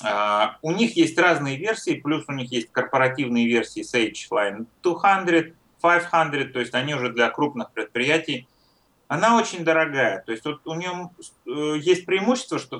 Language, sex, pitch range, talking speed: English, male, 120-160 Hz, 160 wpm